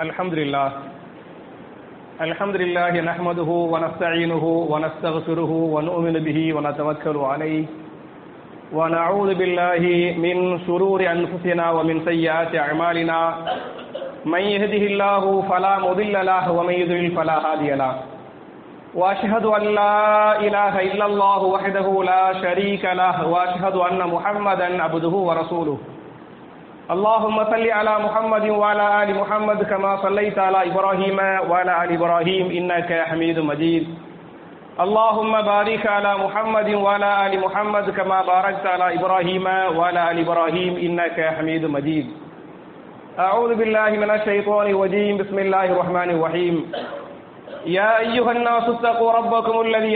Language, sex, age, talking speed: English, male, 40-59, 115 wpm